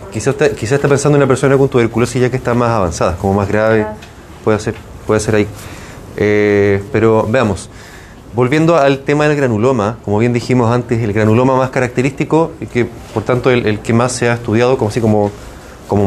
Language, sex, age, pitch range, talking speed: Spanish, male, 30-49, 100-135 Hz, 200 wpm